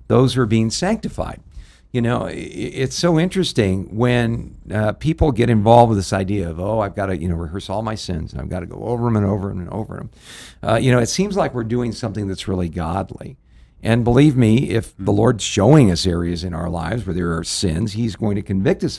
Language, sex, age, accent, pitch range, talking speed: English, male, 50-69, American, 95-120 Hz, 235 wpm